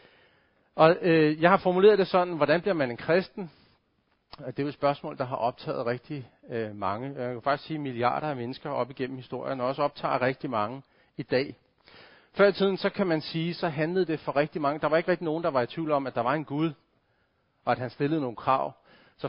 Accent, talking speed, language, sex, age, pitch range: native, 235 wpm, Danish, male, 40-59, 130-165 Hz